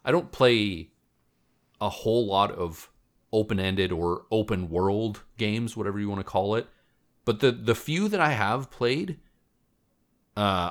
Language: English